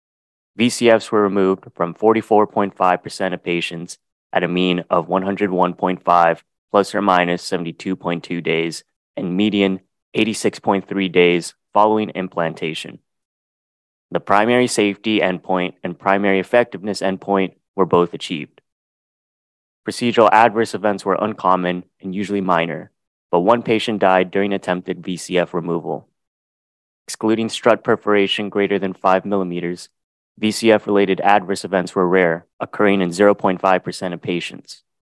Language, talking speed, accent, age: English, 115 wpm, American, 20-39